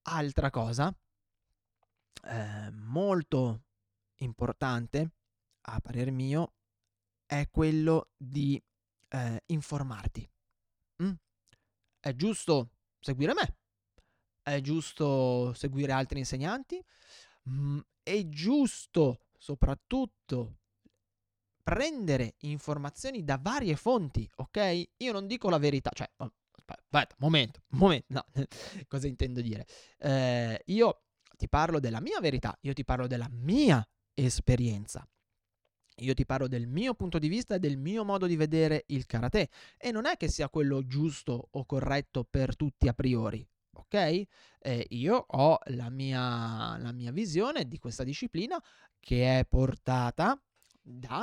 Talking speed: 125 wpm